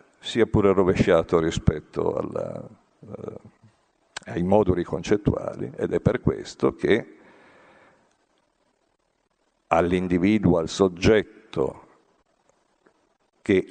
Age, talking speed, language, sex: 50-69, 80 wpm, Italian, male